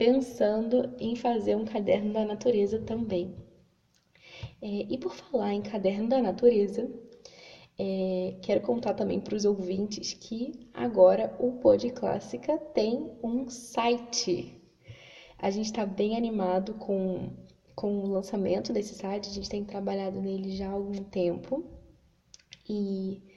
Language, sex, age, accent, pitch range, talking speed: Portuguese, female, 10-29, Brazilian, 195-245 Hz, 135 wpm